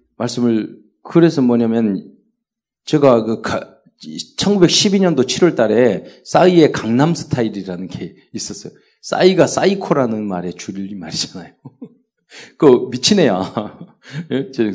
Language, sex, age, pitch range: Korean, male, 40-59, 115-170 Hz